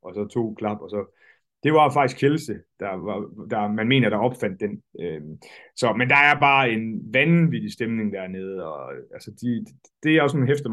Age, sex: 30-49, male